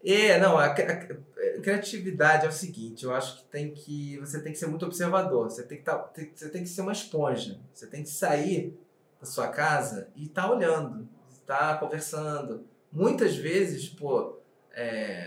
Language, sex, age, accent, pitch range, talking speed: Portuguese, male, 20-39, Brazilian, 145-200 Hz, 195 wpm